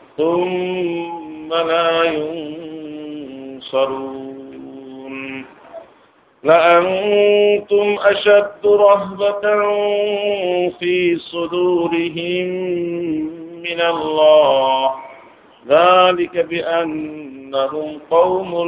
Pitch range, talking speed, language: 135-170 Hz, 40 wpm, Bengali